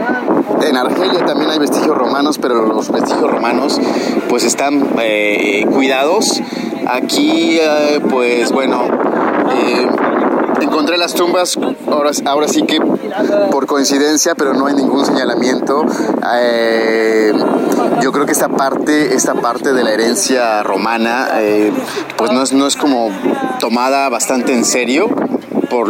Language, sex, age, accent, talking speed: Spanish, male, 30-49, Mexican, 125 wpm